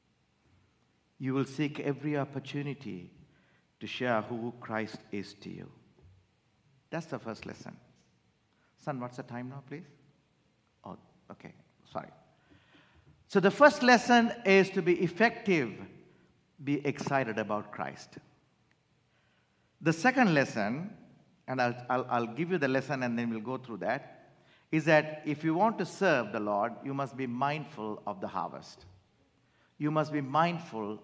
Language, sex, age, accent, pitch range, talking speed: English, male, 50-69, Indian, 130-205 Hz, 140 wpm